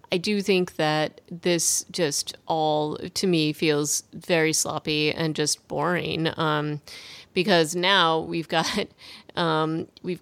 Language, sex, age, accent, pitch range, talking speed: English, female, 30-49, American, 160-195 Hz, 130 wpm